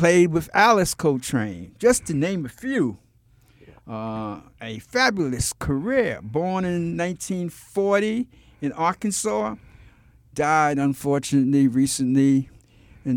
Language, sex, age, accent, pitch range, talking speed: English, male, 60-79, American, 120-155 Hz, 100 wpm